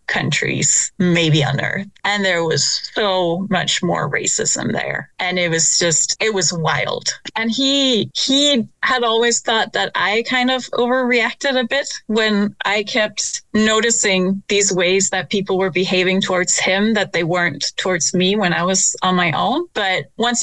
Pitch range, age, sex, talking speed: 180-220 Hz, 30-49, female, 165 wpm